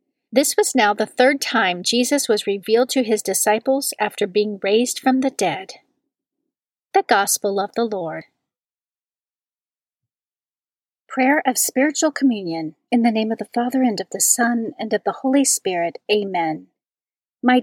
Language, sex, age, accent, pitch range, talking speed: English, female, 40-59, American, 200-255 Hz, 150 wpm